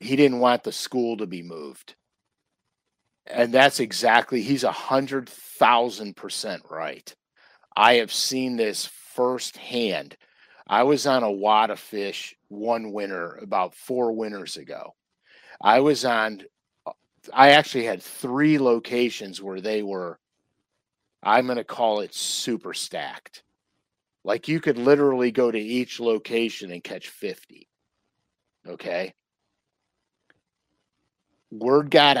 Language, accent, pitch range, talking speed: English, American, 105-130 Hz, 125 wpm